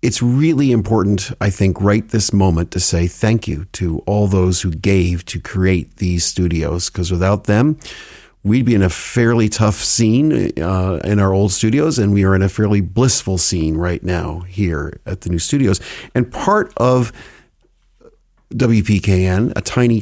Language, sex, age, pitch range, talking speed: English, male, 50-69, 95-120 Hz, 170 wpm